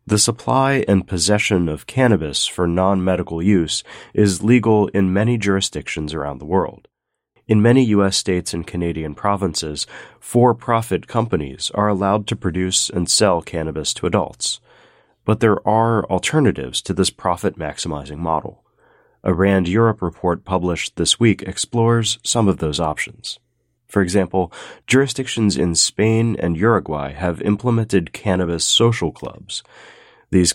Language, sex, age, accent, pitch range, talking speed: English, male, 30-49, American, 85-110 Hz, 135 wpm